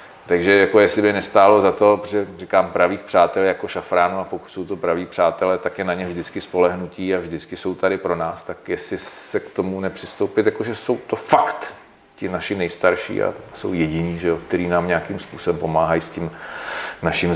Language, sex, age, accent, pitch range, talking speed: Czech, male, 40-59, native, 85-95 Hz, 195 wpm